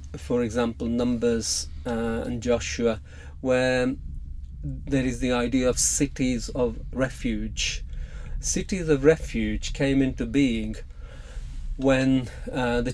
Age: 40-59